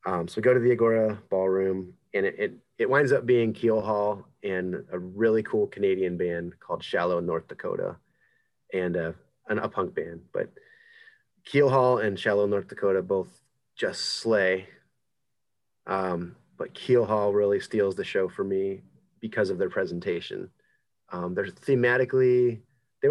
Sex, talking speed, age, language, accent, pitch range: male, 160 wpm, 30-49, English, American, 95-125 Hz